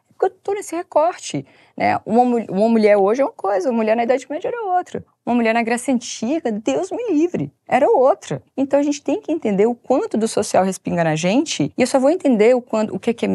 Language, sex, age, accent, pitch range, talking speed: Portuguese, female, 20-39, Brazilian, 185-260 Hz, 240 wpm